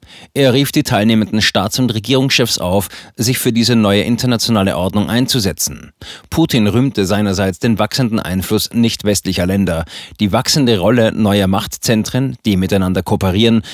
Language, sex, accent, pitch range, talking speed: German, male, German, 95-120 Hz, 135 wpm